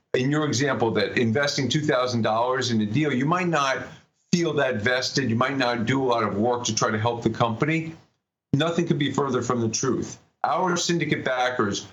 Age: 50-69